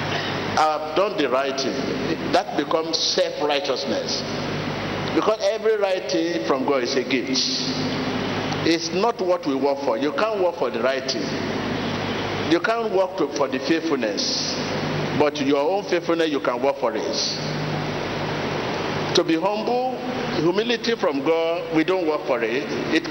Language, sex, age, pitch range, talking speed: English, male, 50-69, 145-205 Hz, 150 wpm